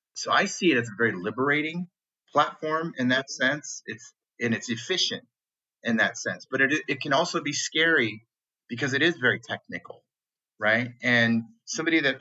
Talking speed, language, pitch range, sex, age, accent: 170 wpm, English, 110-130 Hz, male, 30-49, American